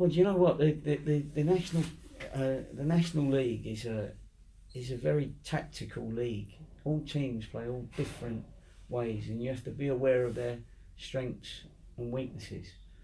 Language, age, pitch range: English, 40-59, 110-140 Hz